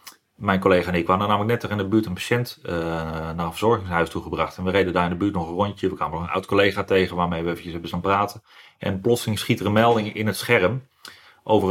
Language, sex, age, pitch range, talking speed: Dutch, male, 30-49, 90-110 Hz, 260 wpm